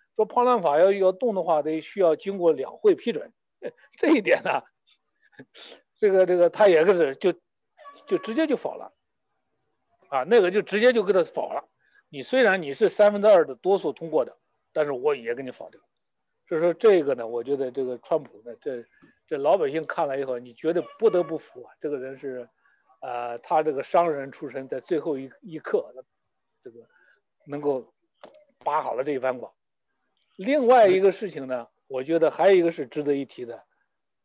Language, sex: Chinese, male